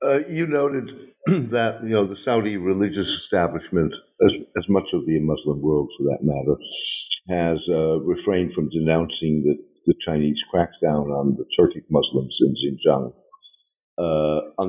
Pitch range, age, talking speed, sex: 75-115 Hz, 60-79, 150 wpm, male